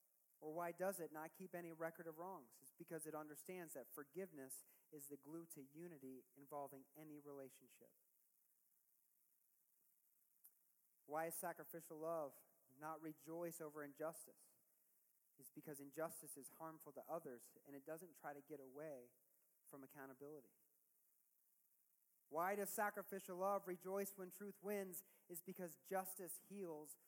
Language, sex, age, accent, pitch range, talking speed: English, male, 40-59, American, 135-170 Hz, 135 wpm